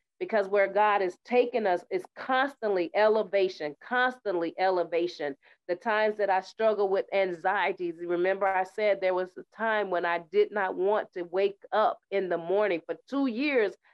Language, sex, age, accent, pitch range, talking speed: English, female, 30-49, American, 185-230 Hz, 170 wpm